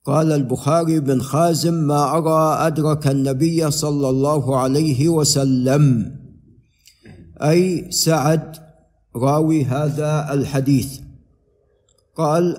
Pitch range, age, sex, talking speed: 135-165 Hz, 50-69, male, 85 wpm